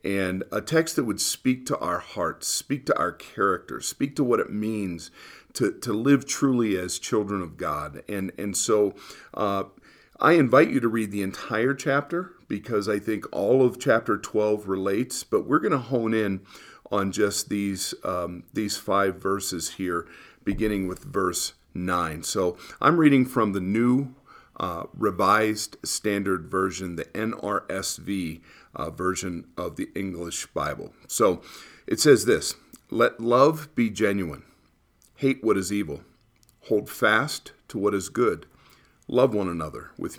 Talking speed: 155 wpm